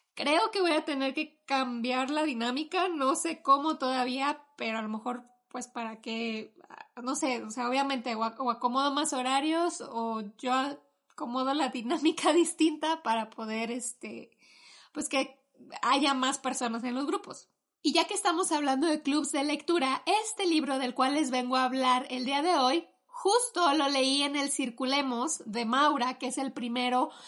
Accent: Mexican